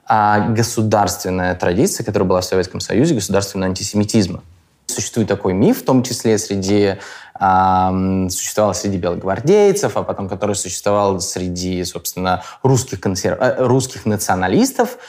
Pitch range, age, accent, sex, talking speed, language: 95-130 Hz, 20-39, native, male, 115 wpm, Russian